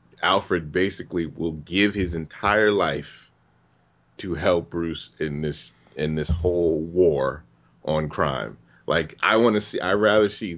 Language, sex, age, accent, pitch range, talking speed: English, male, 30-49, American, 75-100 Hz, 145 wpm